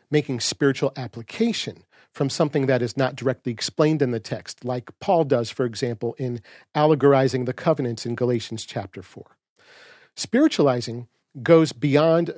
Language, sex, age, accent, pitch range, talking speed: English, male, 40-59, American, 125-160 Hz, 140 wpm